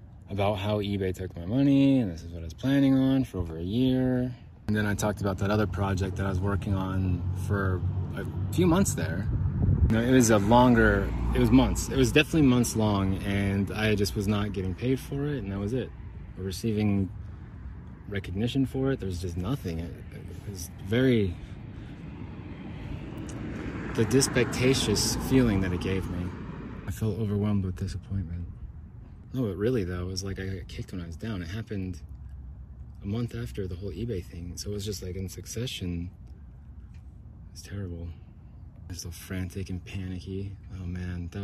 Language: English